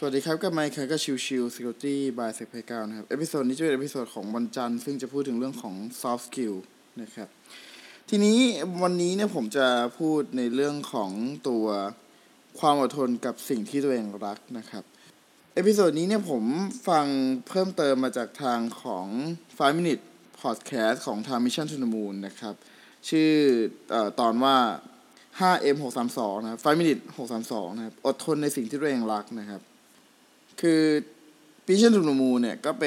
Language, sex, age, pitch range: Thai, male, 20-39, 120-160 Hz